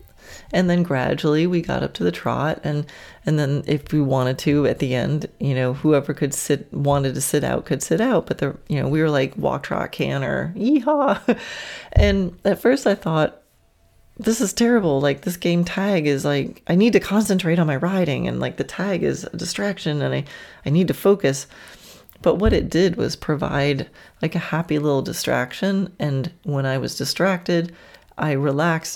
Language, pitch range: English, 140-180 Hz